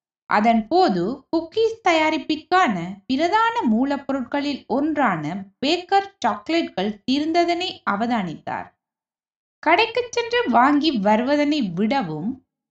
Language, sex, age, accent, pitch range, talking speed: Tamil, female, 20-39, native, 225-365 Hz, 75 wpm